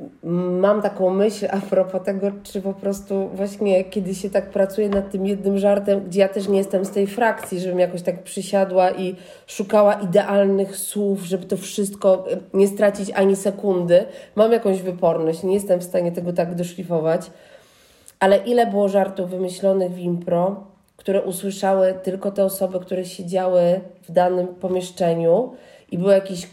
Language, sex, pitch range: Polish, female, 190-215 Hz